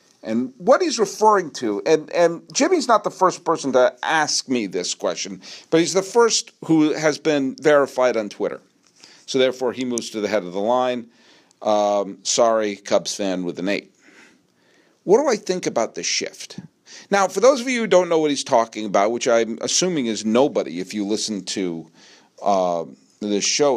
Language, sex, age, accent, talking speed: English, male, 50-69, American, 190 wpm